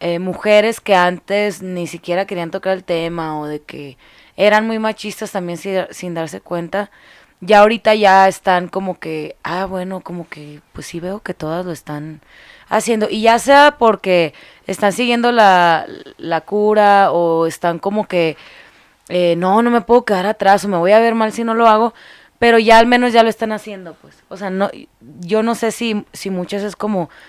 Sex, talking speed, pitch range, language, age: female, 195 wpm, 175-215 Hz, Spanish, 20-39